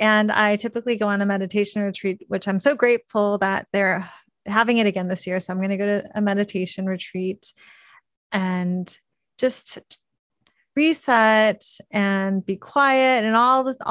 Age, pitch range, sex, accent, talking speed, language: 30-49, 190-225 Hz, female, American, 160 wpm, English